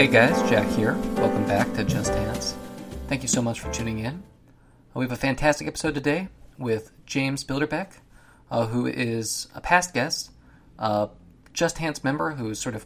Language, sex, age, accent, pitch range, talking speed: English, male, 20-39, American, 110-135 Hz, 175 wpm